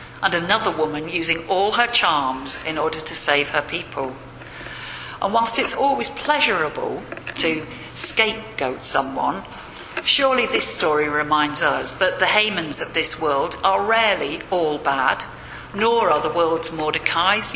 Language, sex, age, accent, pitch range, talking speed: English, female, 50-69, British, 155-220 Hz, 140 wpm